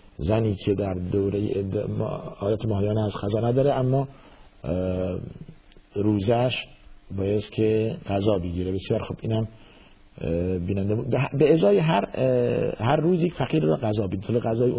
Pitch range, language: 95-110 Hz, Persian